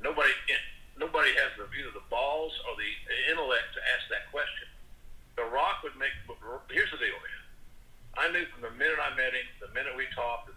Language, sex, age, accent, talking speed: English, male, 50-69, American, 205 wpm